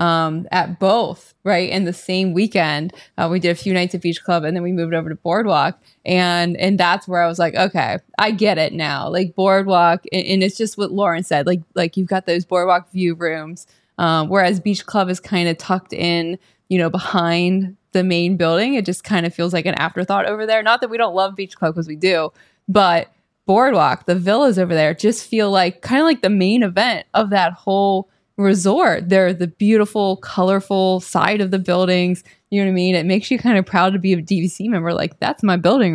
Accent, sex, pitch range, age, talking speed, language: American, female, 175-200 Hz, 20-39, 225 wpm, English